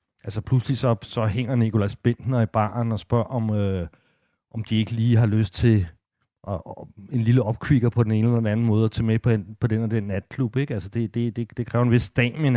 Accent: native